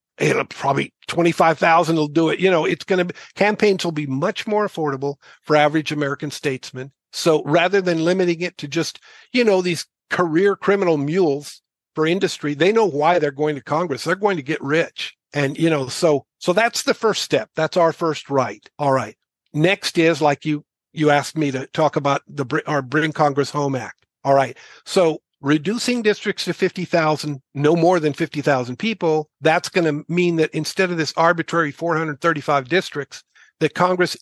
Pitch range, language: 145-180 Hz, English